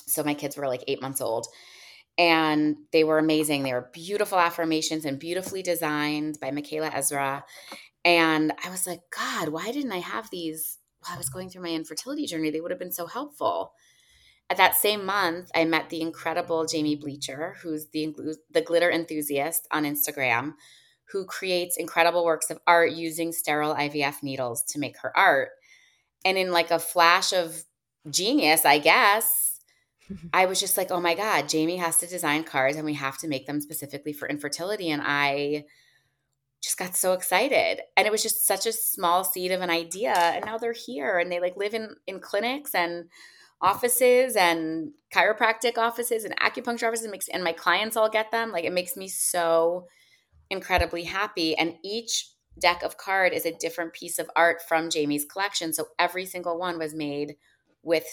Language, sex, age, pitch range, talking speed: English, female, 20-39, 150-185 Hz, 185 wpm